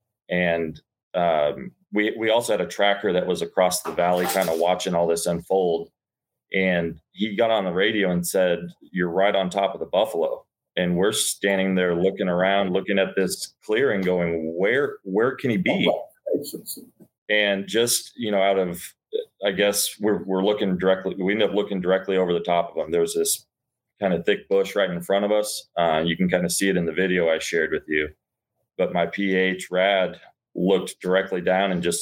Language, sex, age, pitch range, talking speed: English, male, 30-49, 90-105 Hz, 200 wpm